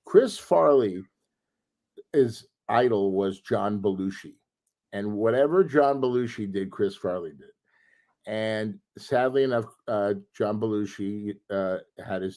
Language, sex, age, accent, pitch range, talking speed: English, male, 50-69, American, 100-135 Hz, 110 wpm